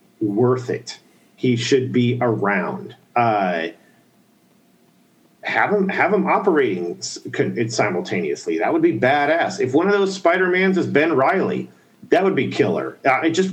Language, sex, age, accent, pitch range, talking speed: English, male, 40-59, American, 115-175 Hz, 150 wpm